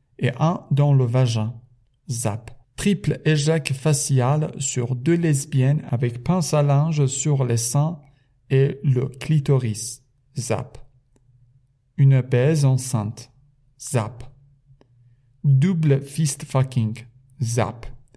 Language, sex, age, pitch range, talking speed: Persian, male, 50-69, 125-145 Hz, 100 wpm